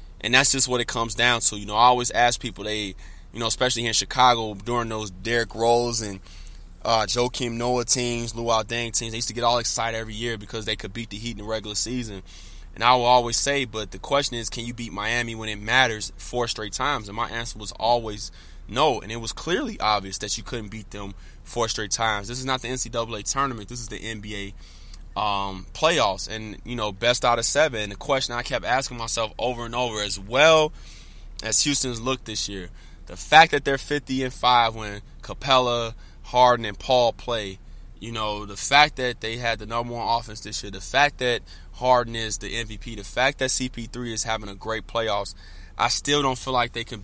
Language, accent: English, American